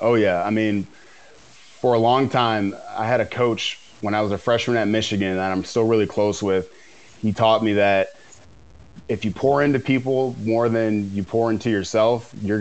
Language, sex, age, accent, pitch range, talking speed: English, male, 20-39, American, 105-120 Hz, 195 wpm